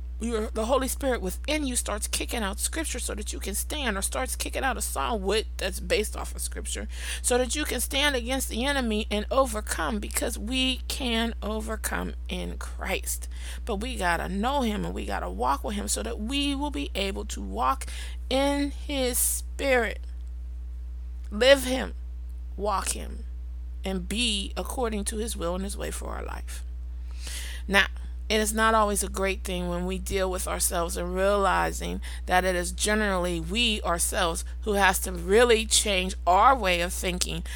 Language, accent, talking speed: English, American, 175 wpm